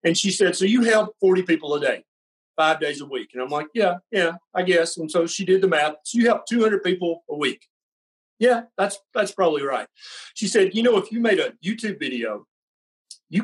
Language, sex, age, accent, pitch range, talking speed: English, male, 50-69, American, 155-205 Hz, 225 wpm